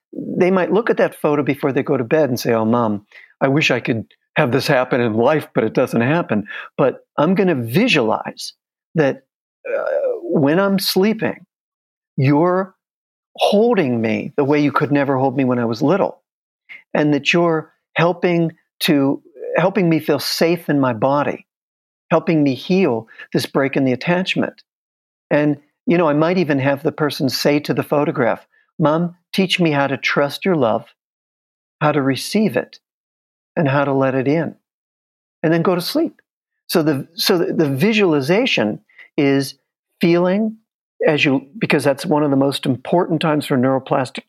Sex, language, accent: male, English, American